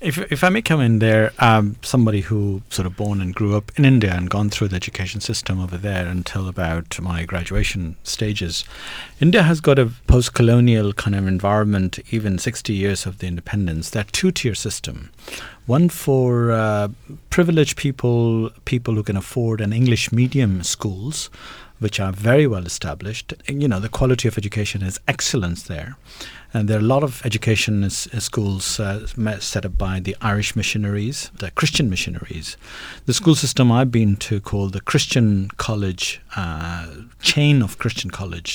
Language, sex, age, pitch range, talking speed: English, male, 50-69, 95-120 Hz, 175 wpm